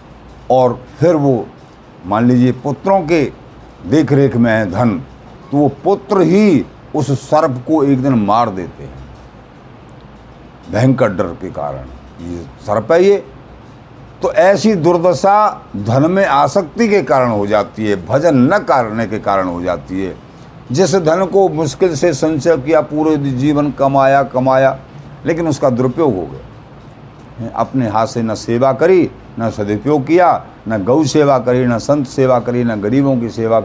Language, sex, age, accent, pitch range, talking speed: Hindi, male, 60-79, native, 120-180 Hz, 155 wpm